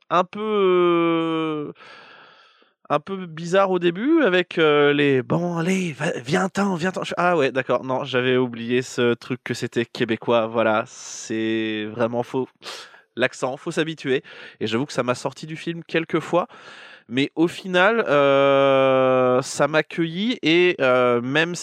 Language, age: French, 20-39